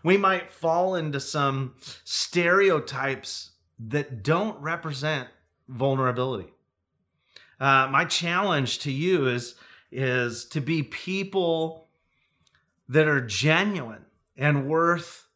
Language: English